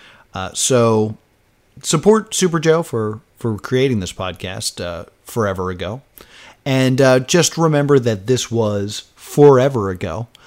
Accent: American